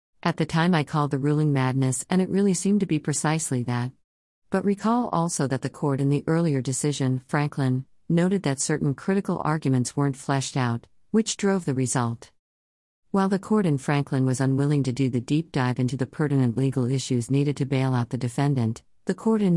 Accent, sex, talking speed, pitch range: American, female, 200 wpm, 130-160 Hz